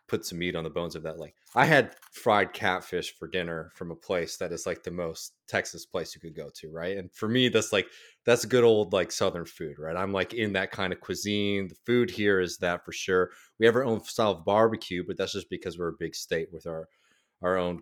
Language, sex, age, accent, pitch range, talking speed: English, male, 30-49, American, 90-110 Hz, 255 wpm